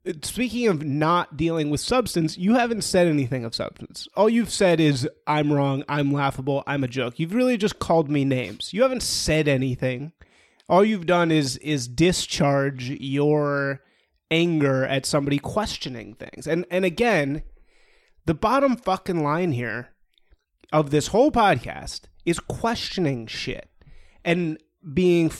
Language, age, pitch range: English, 30-49, 145-205 Hz